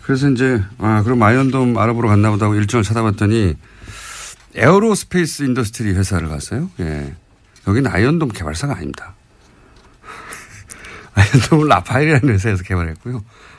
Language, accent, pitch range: Korean, native, 95-130 Hz